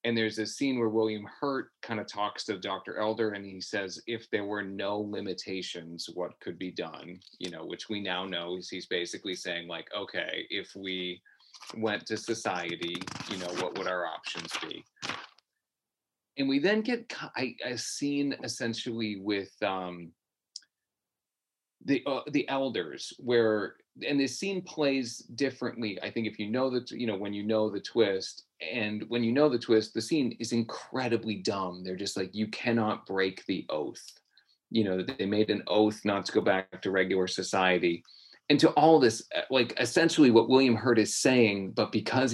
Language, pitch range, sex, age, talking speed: English, 95-120 Hz, male, 30-49, 180 wpm